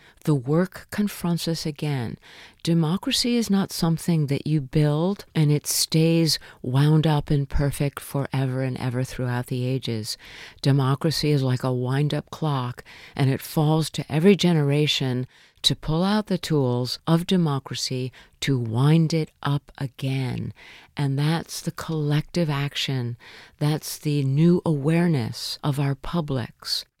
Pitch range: 140-165 Hz